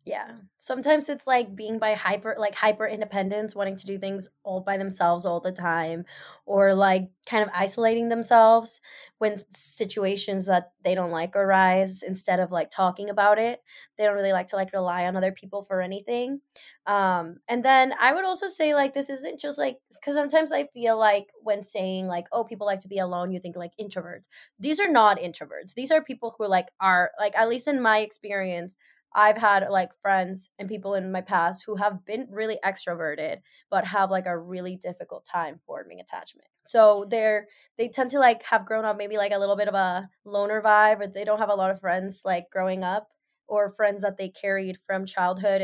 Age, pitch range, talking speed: 20-39, 190-220 Hz, 205 wpm